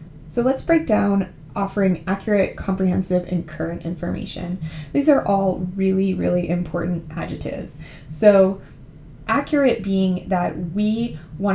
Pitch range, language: 170-200 Hz, English